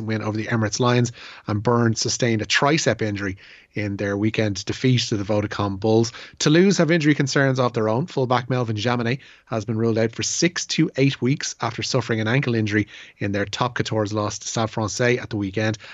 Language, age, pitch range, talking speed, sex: English, 30-49, 100-125 Hz, 205 wpm, male